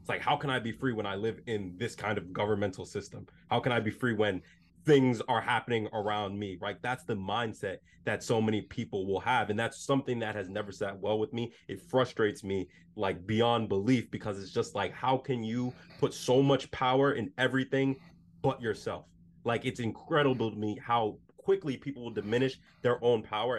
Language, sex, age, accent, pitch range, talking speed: English, male, 20-39, American, 105-135 Hz, 210 wpm